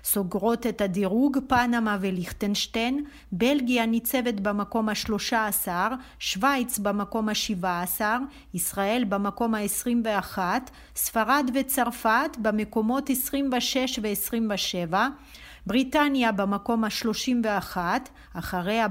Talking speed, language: 90 wpm, Hebrew